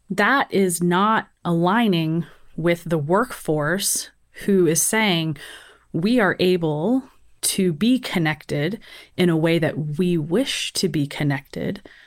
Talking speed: 125 wpm